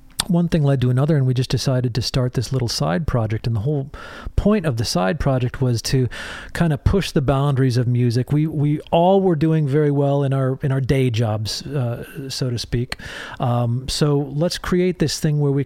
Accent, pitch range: American, 125-155 Hz